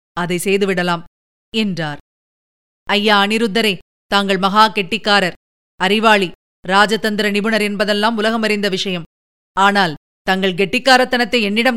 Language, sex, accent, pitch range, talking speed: Tamil, female, native, 195-220 Hz, 90 wpm